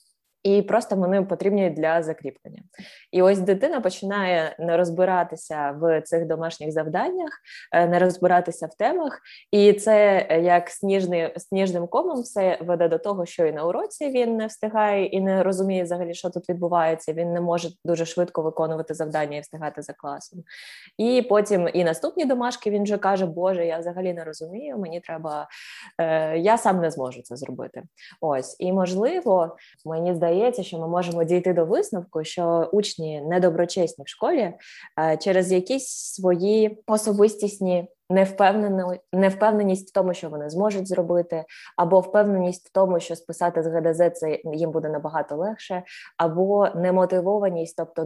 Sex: female